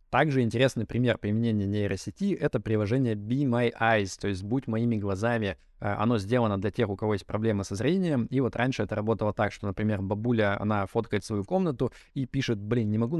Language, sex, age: Russian, male, 20-39